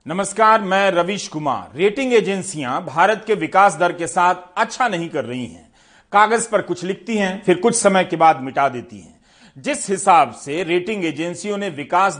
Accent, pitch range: native, 165-210 Hz